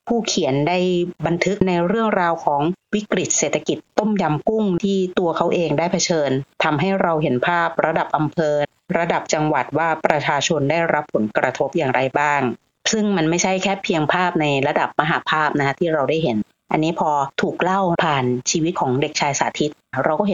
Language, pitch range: Thai, 155-195 Hz